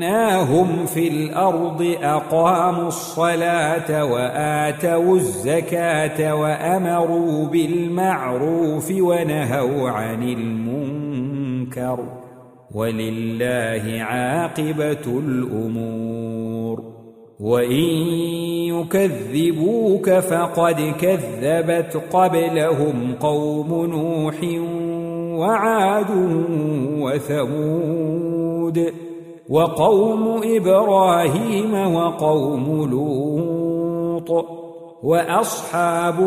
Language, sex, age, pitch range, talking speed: Arabic, male, 50-69, 125-170 Hz, 50 wpm